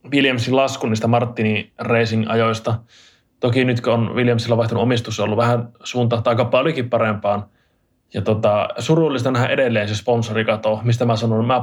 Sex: male